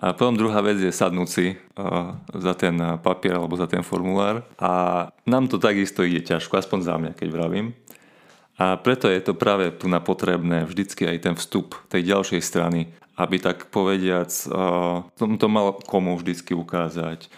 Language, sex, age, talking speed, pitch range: Slovak, male, 30-49, 175 wpm, 90-100 Hz